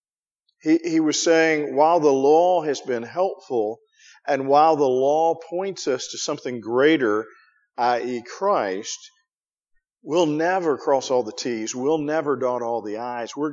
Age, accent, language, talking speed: 50-69, American, English, 145 wpm